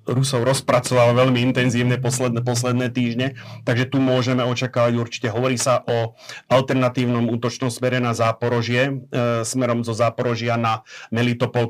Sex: male